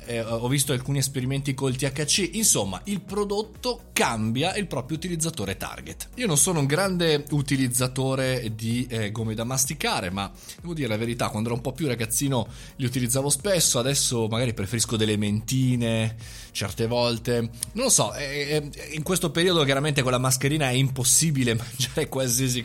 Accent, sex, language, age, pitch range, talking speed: native, male, Italian, 20-39, 115-155 Hz, 165 wpm